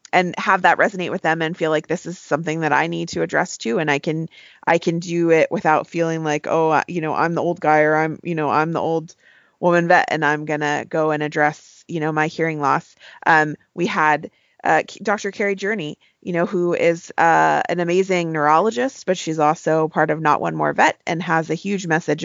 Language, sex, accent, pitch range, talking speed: English, female, American, 155-180 Hz, 230 wpm